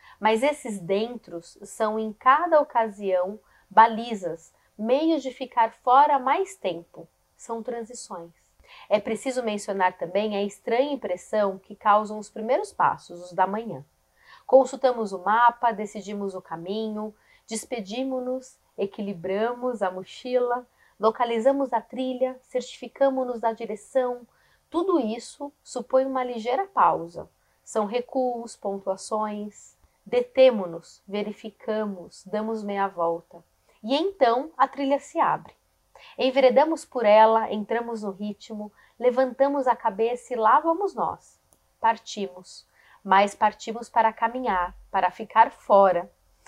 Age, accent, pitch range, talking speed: 30-49, Brazilian, 205-255 Hz, 115 wpm